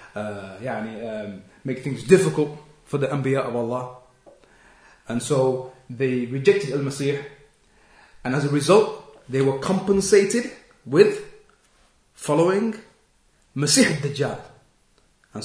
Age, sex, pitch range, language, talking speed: 30-49, male, 130-165 Hz, English, 110 wpm